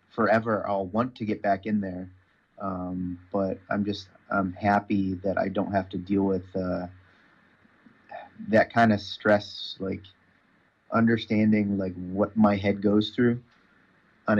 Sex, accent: male, American